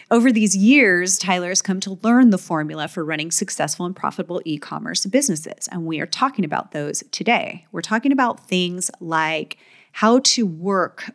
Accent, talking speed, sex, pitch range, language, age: American, 170 wpm, female, 165-210 Hz, English, 30-49